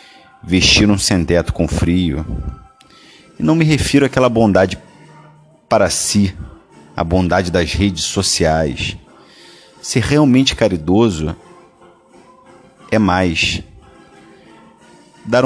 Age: 40-59